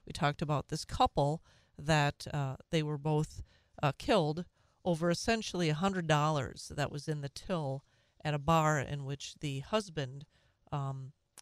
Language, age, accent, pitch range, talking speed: English, 40-59, American, 145-190 Hz, 145 wpm